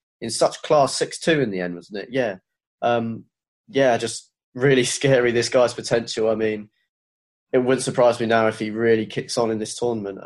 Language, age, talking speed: English, 20-39, 195 wpm